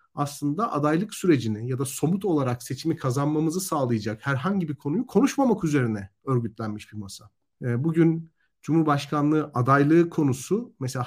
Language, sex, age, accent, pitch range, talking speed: Turkish, male, 40-59, native, 125-170 Hz, 125 wpm